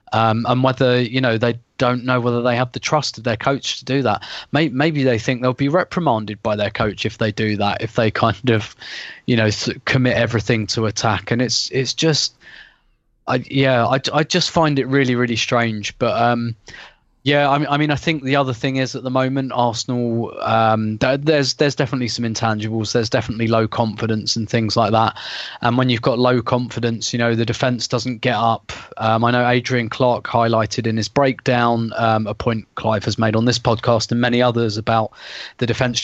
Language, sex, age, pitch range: English, male, 20-39, 110-130 Hz